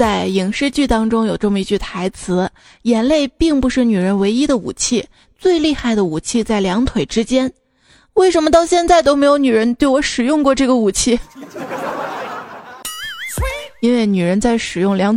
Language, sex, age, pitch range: Chinese, female, 20-39, 215-275 Hz